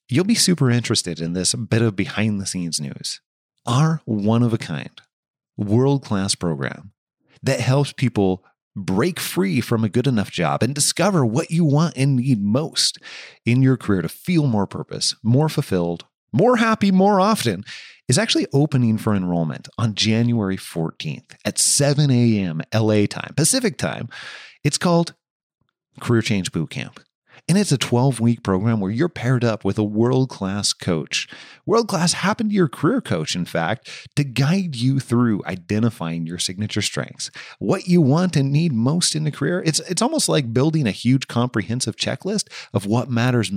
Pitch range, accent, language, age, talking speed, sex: 105-155 Hz, American, English, 30-49, 160 wpm, male